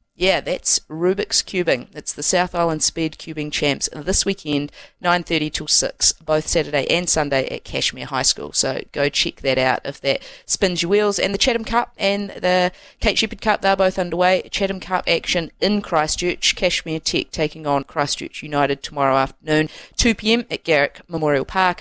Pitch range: 145-185 Hz